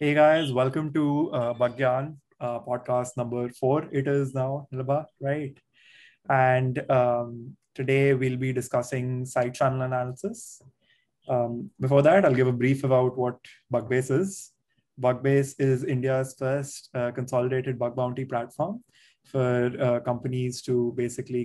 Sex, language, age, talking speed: male, English, 20-39, 135 wpm